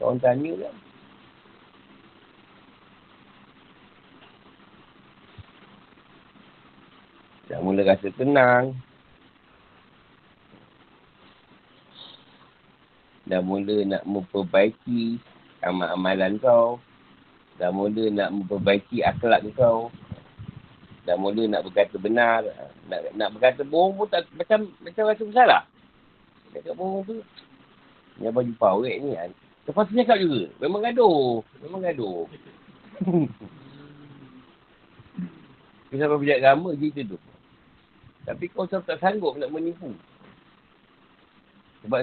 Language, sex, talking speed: Malay, male, 85 wpm